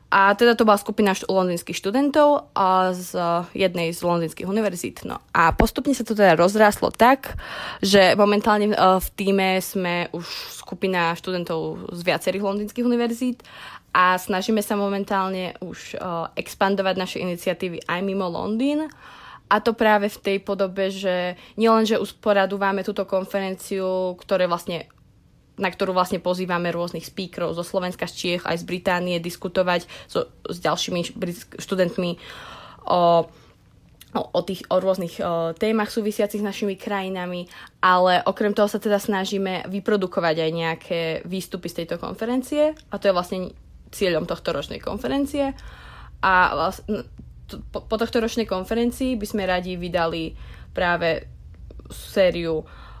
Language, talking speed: Slovak, 140 wpm